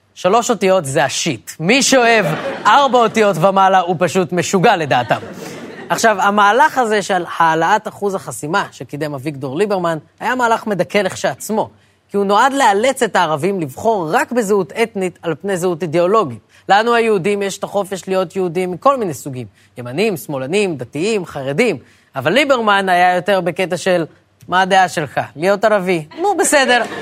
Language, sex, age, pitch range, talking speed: Hebrew, female, 20-39, 175-220 Hz, 150 wpm